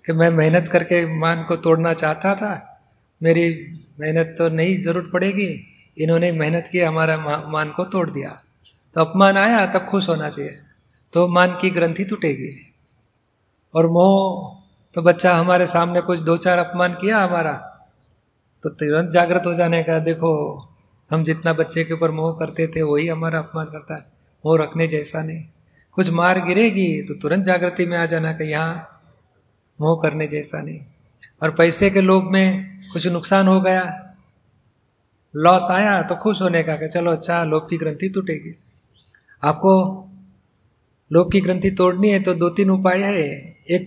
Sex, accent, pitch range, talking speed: male, native, 160-180 Hz, 165 wpm